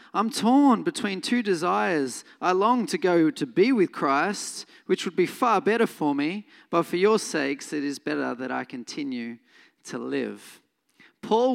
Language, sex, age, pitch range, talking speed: English, male, 40-59, 170-255 Hz, 170 wpm